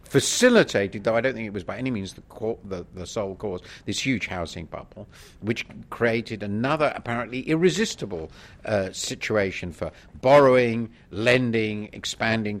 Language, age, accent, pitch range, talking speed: English, 50-69, British, 90-120 Hz, 150 wpm